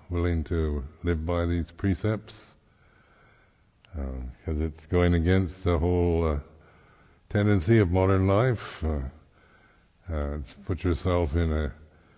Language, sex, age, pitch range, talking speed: English, male, 60-79, 75-95 Hz, 125 wpm